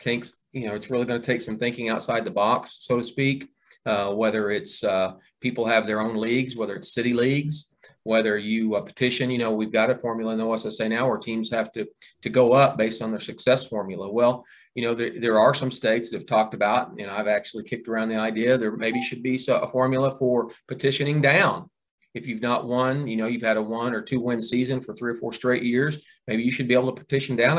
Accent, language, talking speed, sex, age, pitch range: American, English, 245 wpm, male, 40-59, 110-125 Hz